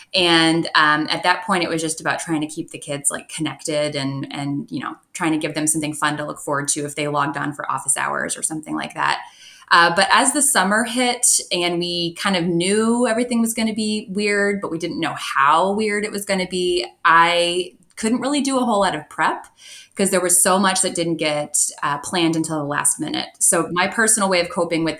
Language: English